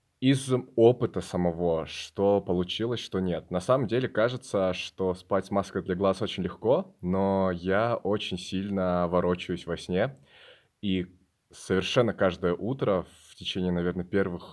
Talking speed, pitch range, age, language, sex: 140 wpm, 90-105 Hz, 20-39, Russian, male